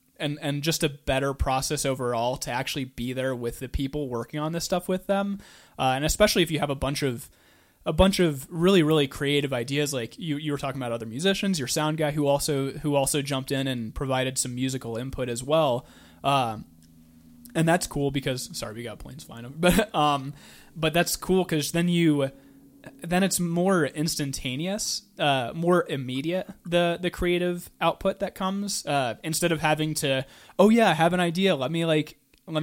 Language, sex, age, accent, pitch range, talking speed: English, male, 20-39, American, 130-165 Hz, 195 wpm